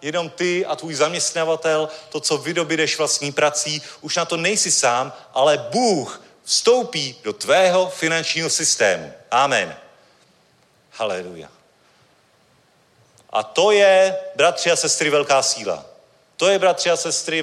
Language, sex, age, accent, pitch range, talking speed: Czech, male, 40-59, native, 130-165 Hz, 125 wpm